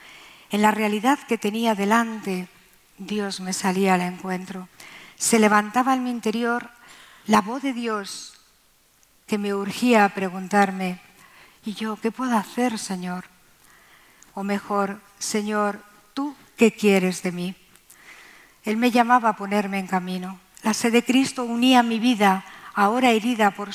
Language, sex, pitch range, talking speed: Spanish, female, 200-240 Hz, 140 wpm